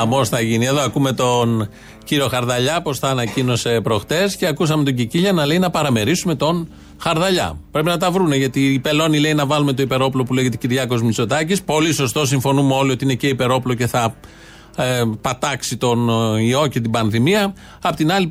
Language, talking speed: Greek, 185 wpm